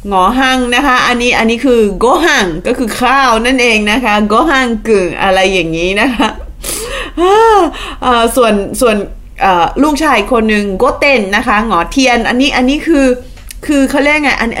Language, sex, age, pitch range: Thai, female, 20-39, 200-270 Hz